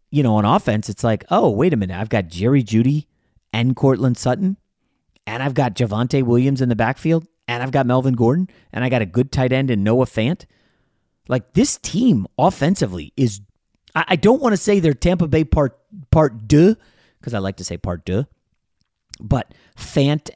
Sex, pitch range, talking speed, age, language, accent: male, 105-140 Hz, 195 wpm, 30-49, English, American